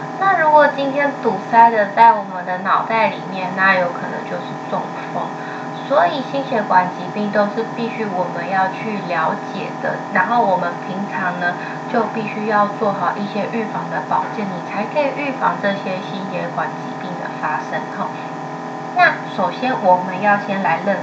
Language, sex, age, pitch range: Chinese, female, 20-39, 185-235 Hz